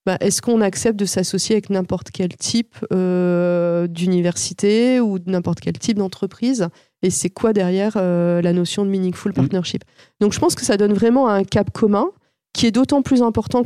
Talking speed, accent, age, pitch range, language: 185 wpm, French, 40-59, 175-210 Hz, French